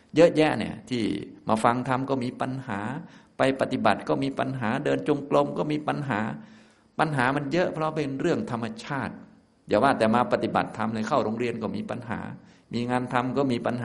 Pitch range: 95-120 Hz